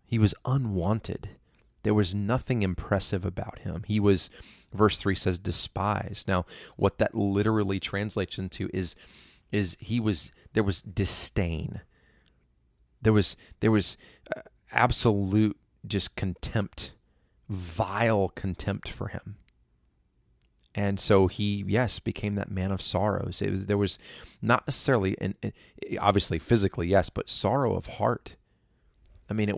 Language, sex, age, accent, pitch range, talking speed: English, male, 30-49, American, 90-110 Hz, 135 wpm